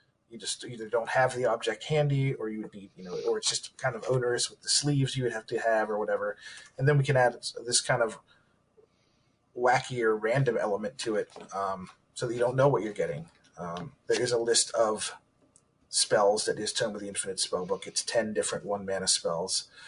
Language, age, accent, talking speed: English, 20-39, American, 215 wpm